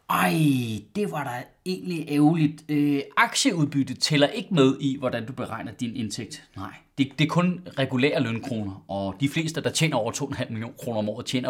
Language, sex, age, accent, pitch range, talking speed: Danish, male, 30-49, native, 125-170 Hz, 190 wpm